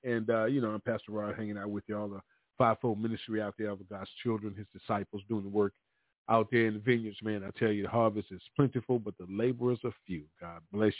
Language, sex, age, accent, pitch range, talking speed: English, male, 40-59, American, 105-115 Hz, 245 wpm